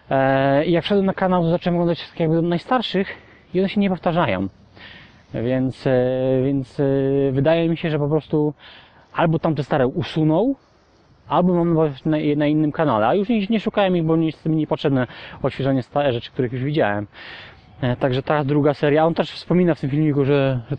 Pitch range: 130-170 Hz